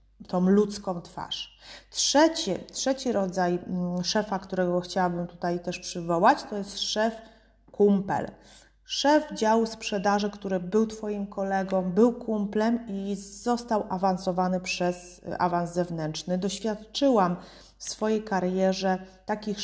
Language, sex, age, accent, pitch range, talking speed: Polish, female, 30-49, native, 185-215 Hz, 110 wpm